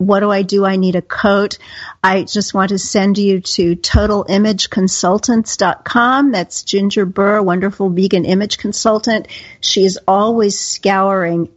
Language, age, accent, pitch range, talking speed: English, 50-69, American, 190-225 Hz, 135 wpm